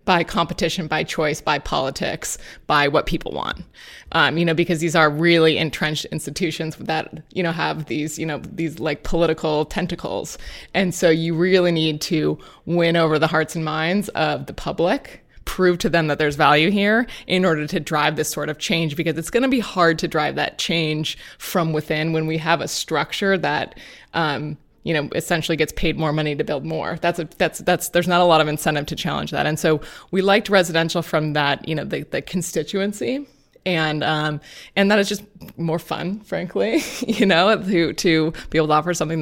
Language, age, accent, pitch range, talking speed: English, 20-39, American, 155-180 Hz, 200 wpm